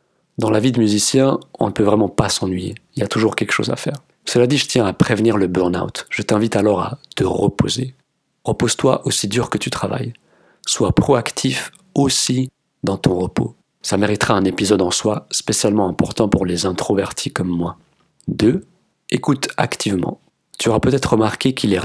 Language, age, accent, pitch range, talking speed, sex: French, 40-59, French, 100-130 Hz, 185 wpm, male